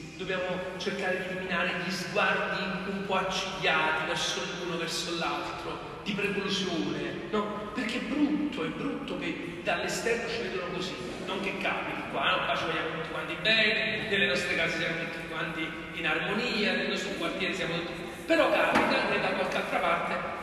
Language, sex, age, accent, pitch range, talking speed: Italian, male, 40-59, native, 185-255 Hz, 165 wpm